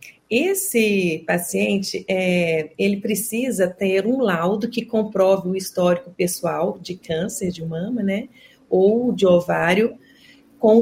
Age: 40-59